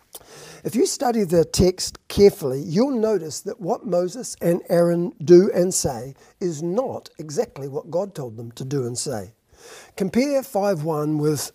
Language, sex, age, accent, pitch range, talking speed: English, male, 50-69, Australian, 165-215 Hz, 155 wpm